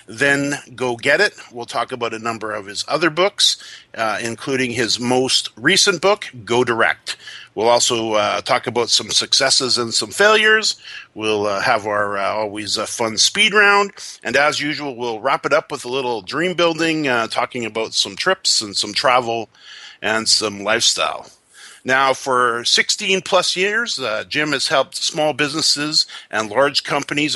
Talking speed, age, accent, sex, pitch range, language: 170 wpm, 50-69, American, male, 120-160 Hz, English